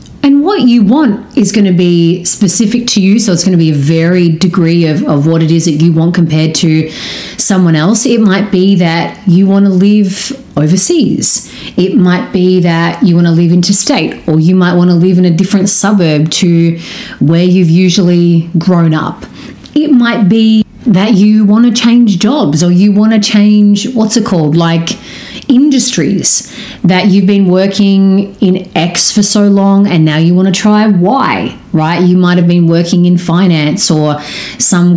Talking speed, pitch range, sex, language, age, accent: 190 wpm, 175-220 Hz, female, English, 30-49, Australian